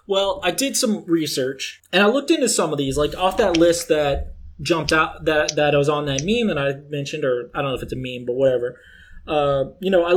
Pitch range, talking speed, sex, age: 135-170 Hz, 255 wpm, male, 20-39